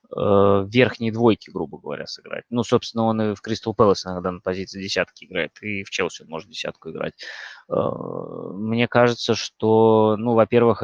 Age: 20-39